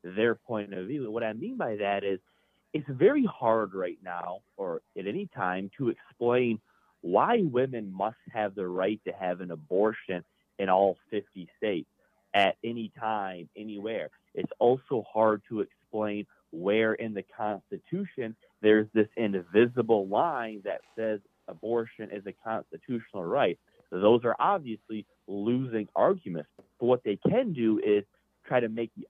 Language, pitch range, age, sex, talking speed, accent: English, 100-125 Hz, 30-49, male, 155 wpm, American